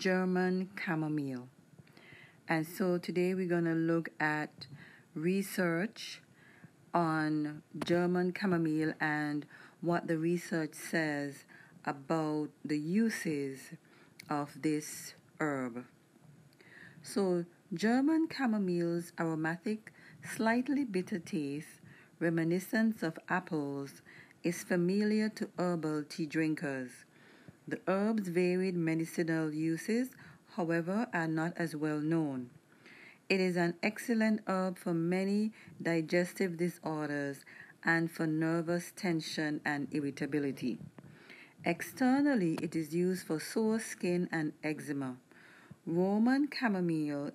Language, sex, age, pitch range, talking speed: English, female, 40-59, 155-185 Hz, 100 wpm